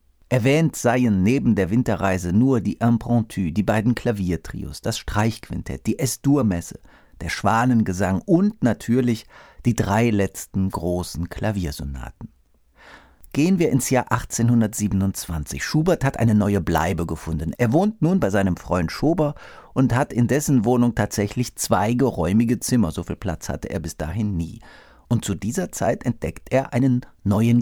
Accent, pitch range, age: German, 95-130 Hz, 50-69